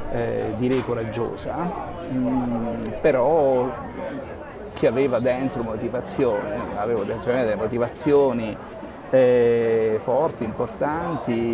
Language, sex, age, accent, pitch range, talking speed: Italian, male, 40-59, native, 120-135 Hz, 75 wpm